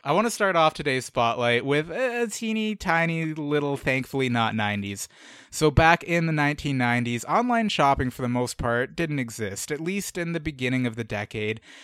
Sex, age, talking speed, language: male, 20-39, 180 wpm, English